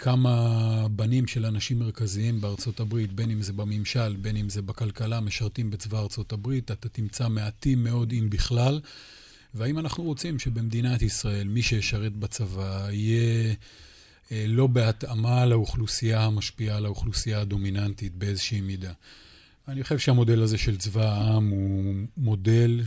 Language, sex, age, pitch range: Hebrew, male, 30-49, 105-115 Hz